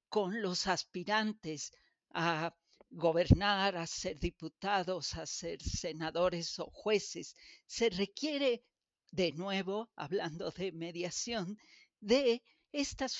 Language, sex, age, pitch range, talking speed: Spanish, female, 50-69, 175-220 Hz, 100 wpm